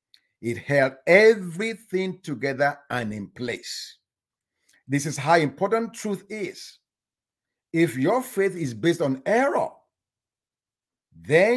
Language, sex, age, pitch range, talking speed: English, male, 50-69, 130-190 Hz, 110 wpm